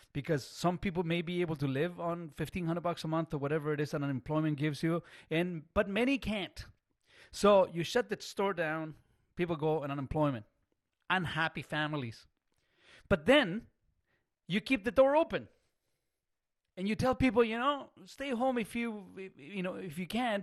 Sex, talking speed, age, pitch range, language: male, 175 wpm, 40-59, 160-215 Hz, English